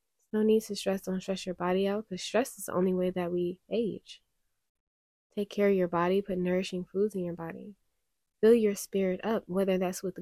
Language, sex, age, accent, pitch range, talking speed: English, female, 20-39, American, 175-210 Hz, 210 wpm